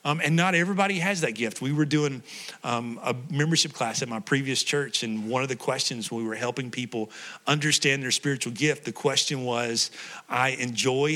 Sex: male